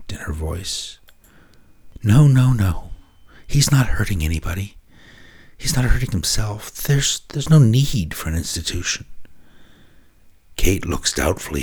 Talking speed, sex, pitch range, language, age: 125 wpm, male, 80-115 Hz, English, 60-79